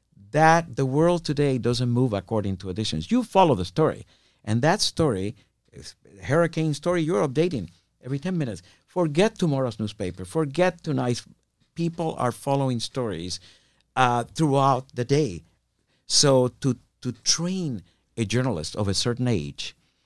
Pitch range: 105-145 Hz